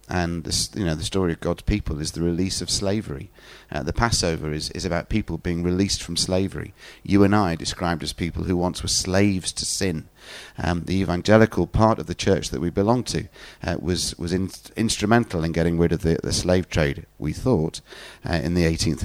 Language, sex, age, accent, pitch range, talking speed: English, male, 30-49, British, 80-95 Hz, 210 wpm